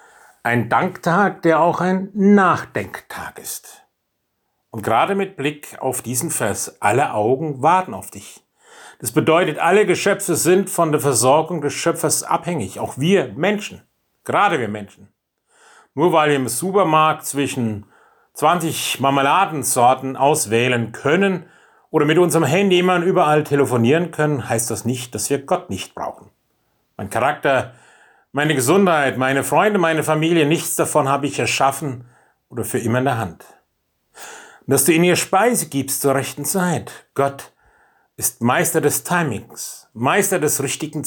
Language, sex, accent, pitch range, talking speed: German, male, German, 130-175 Hz, 145 wpm